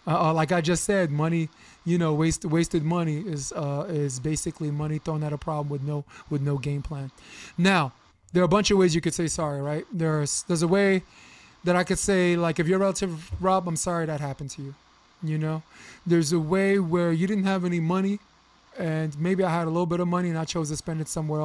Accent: American